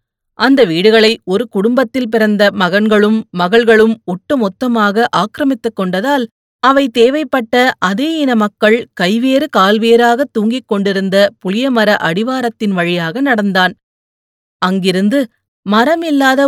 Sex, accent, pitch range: female, native, 200-250 Hz